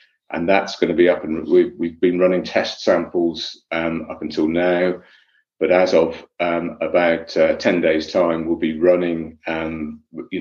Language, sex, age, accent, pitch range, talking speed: English, male, 40-59, British, 80-90 Hz, 175 wpm